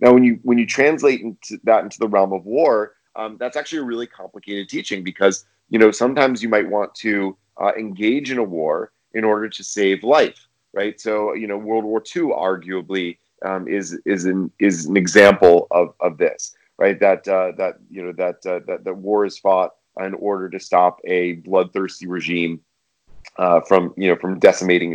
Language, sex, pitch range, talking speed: English, male, 95-115 Hz, 195 wpm